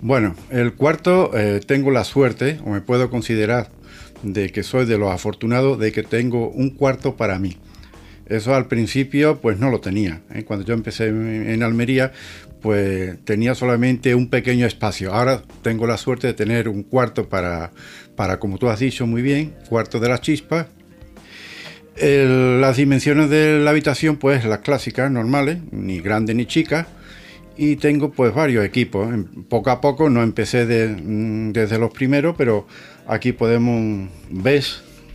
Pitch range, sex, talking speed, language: 110-140 Hz, male, 160 wpm, Spanish